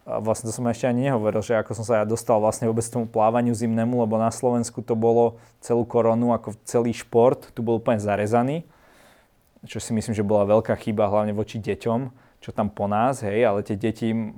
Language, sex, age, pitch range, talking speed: Slovak, male, 20-39, 110-120 Hz, 210 wpm